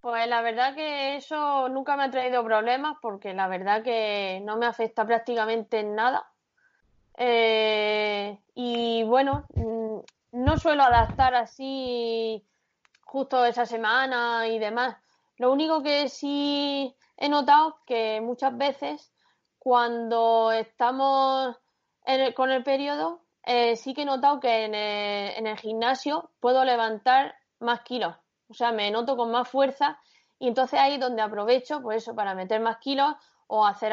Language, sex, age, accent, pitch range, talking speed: Spanish, female, 20-39, Spanish, 220-260 Hz, 150 wpm